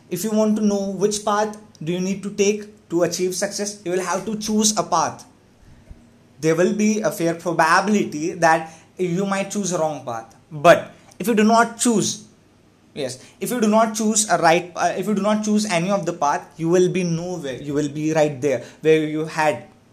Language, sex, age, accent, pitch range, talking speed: English, male, 20-39, Indian, 160-205 Hz, 215 wpm